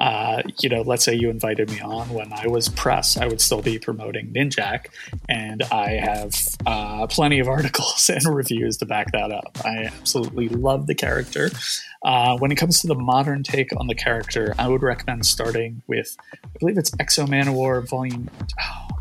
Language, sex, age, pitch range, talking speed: English, male, 30-49, 115-140 Hz, 190 wpm